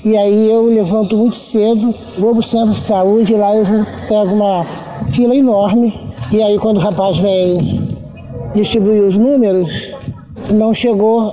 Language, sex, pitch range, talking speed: Portuguese, male, 195-235 Hz, 140 wpm